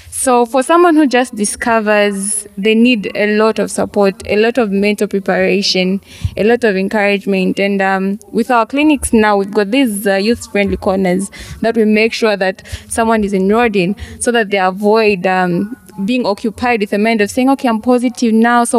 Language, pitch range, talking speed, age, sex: English, 200-240 Hz, 190 wpm, 20-39, female